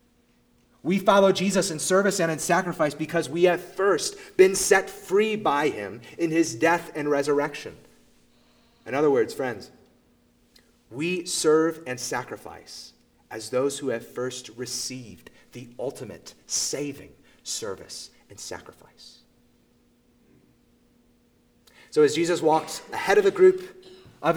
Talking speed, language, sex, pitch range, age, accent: 125 wpm, English, male, 125-180 Hz, 30-49, American